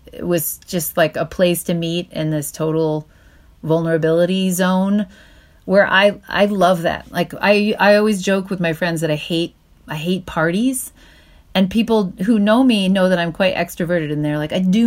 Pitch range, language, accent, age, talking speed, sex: 165-210 Hz, English, American, 30-49, 190 wpm, female